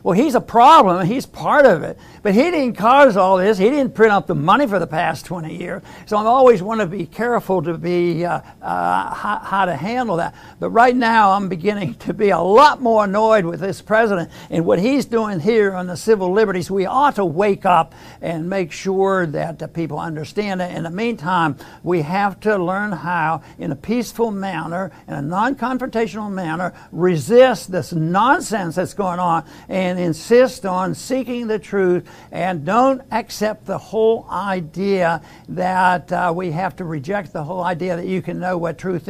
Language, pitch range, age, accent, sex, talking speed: English, 175-220 Hz, 60-79, American, male, 190 wpm